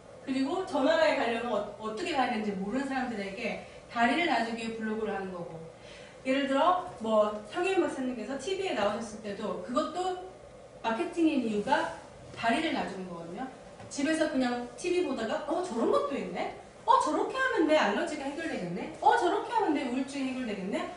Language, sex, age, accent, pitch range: Korean, female, 30-49, native, 230-335 Hz